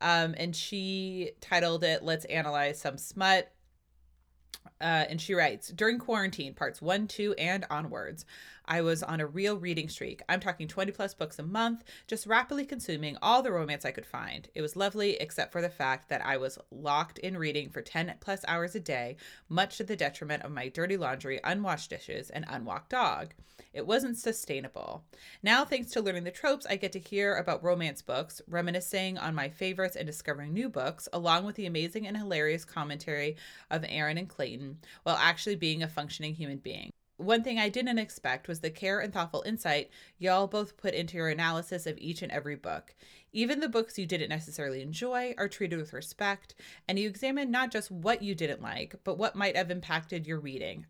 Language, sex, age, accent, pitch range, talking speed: English, female, 20-39, American, 155-200 Hz, 195 wpm